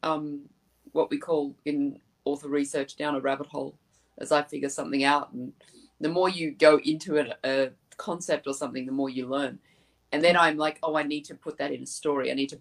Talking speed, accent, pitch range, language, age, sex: 225 wpm, Australian, 140-160 Hz, English, 30-49, female